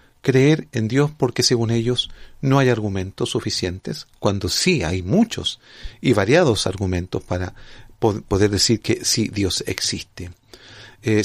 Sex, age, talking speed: male, 40-59, 135 wpm